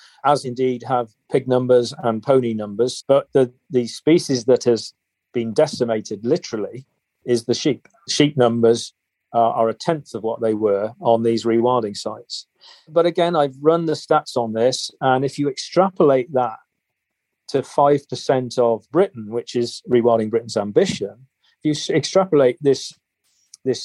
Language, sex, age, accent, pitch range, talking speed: English, male, 40-59, British, 115-145 Hz, 155 wpm